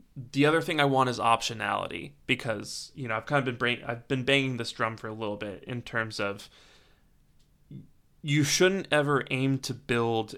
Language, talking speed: English, 190 wpm